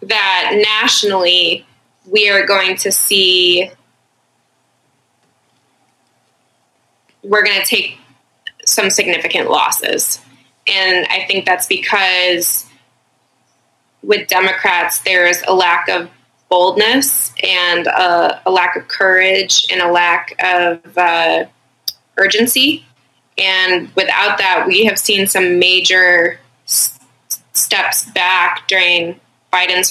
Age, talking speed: 20-39, 100 wpm